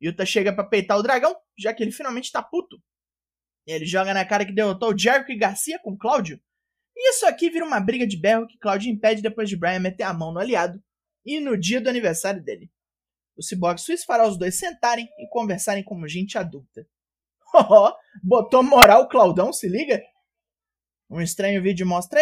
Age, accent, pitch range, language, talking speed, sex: 20-39, Brazilian, 190-275 Hz, Portuguese, 190 wpm, male